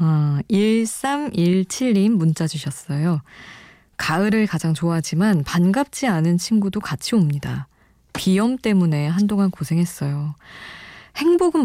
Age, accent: 20-39, native